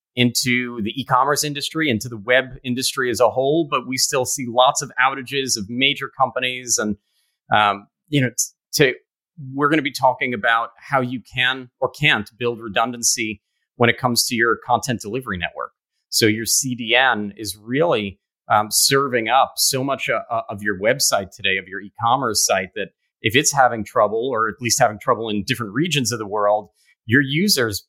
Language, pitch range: English, 115-145 Hz